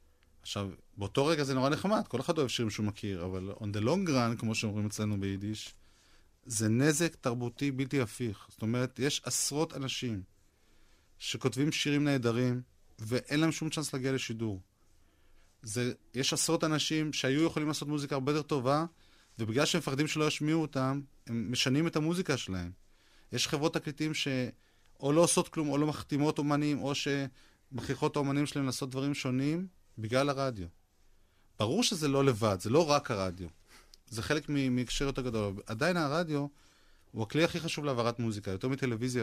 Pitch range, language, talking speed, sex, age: 105-145 Hz, Hebrew, 155 wpm, male, 30-49